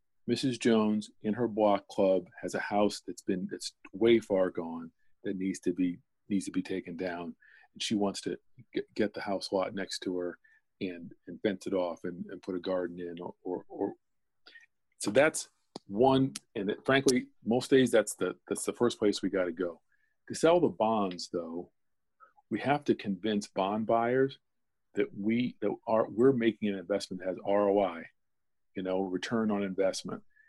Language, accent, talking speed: English, American, 185 wpm